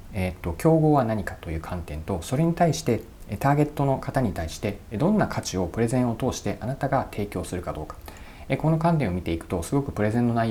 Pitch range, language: 85-135 Hz, Japanese